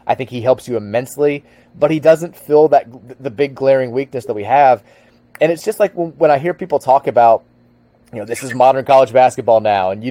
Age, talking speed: 30-49, 225 wpm